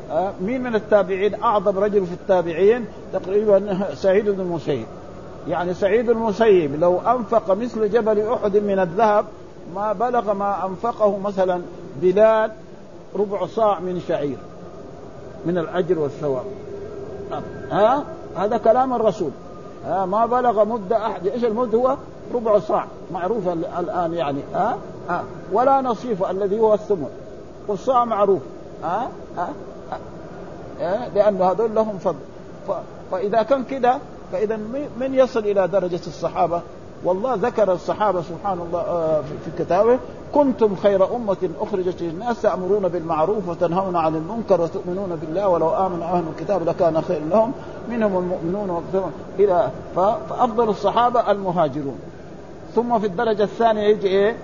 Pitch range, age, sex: 180-220 Hz, 50-69, male